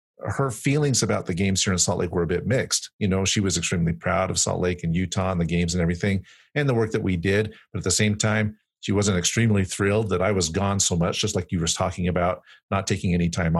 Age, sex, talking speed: 40-59, male, 265 wpm